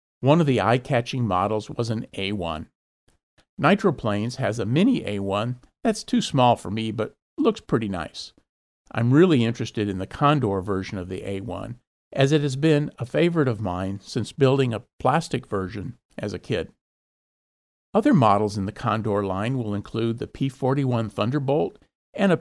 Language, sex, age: English, male, 50-69